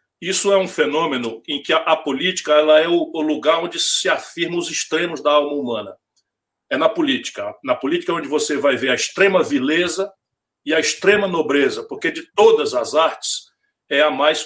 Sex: male